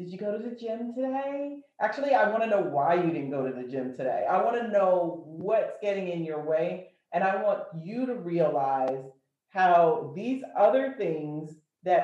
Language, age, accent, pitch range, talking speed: English, 40-59, American, 165-230 Hz, 190 wpm